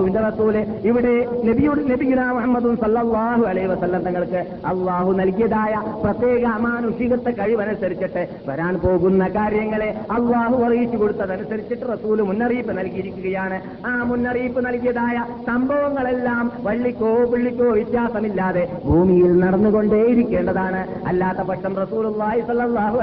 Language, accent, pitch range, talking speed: Malayalam, native, 170-230 Hz, 85 wpm